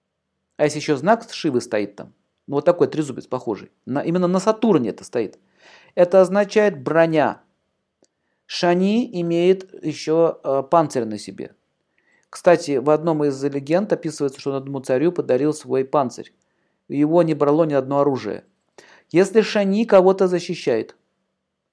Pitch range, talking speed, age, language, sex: 145-190 Hz, 140 wpm, 50-69, Russian, male